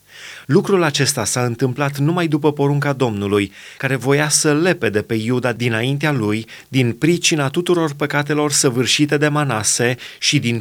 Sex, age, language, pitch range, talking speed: male, 30-49, Romanian, 120-150 Hz, 140 wpm